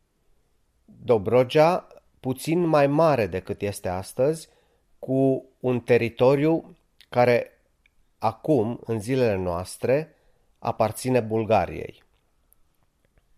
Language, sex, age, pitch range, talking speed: Romanian, male, 30-49, 100-130 Hz, 75 wpm